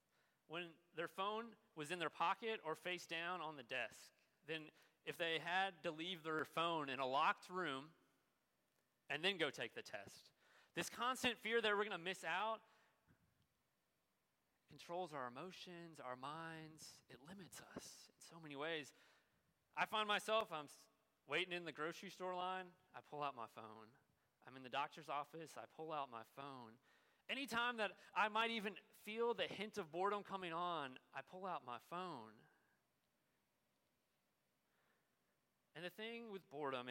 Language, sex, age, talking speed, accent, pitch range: English, male, 30-49, 160 wpm, American, 140-190 Hz